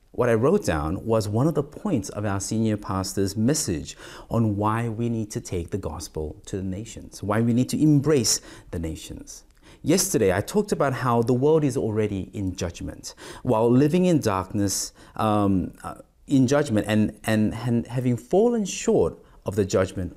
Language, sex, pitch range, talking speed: English, male, 100-135 Hz, 180 wpm